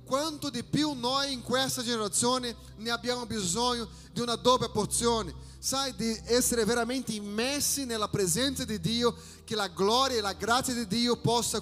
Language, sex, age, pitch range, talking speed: Italian, male, 30-49, 215-255 Hz, 165 wpm